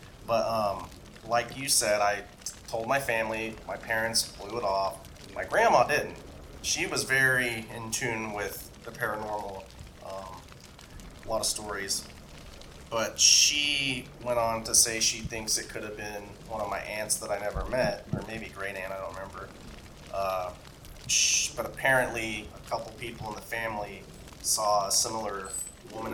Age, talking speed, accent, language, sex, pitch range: 30-49, 160 wpm, American, English, male, 100-120 Hz